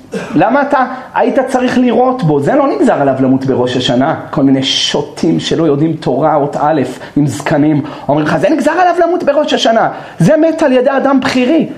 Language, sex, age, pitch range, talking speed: Hebrew, male, 40-59, 165-270 Hz, 180 wpm